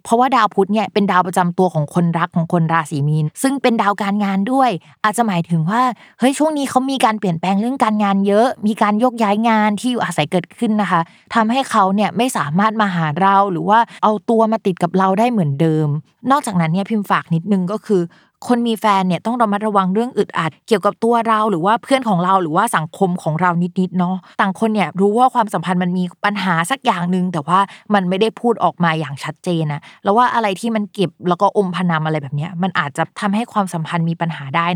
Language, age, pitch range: Thai, 20-39, 175-230 Hz